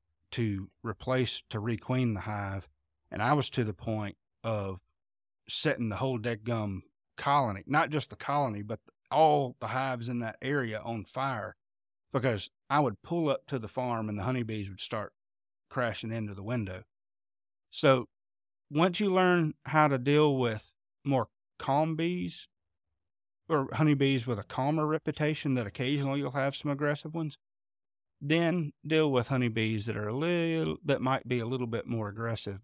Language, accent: English, American